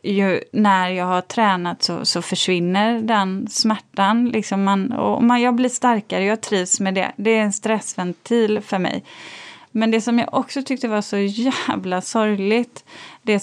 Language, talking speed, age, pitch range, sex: Swedish, 170 wpm, 30-49, 190-235 Hz, female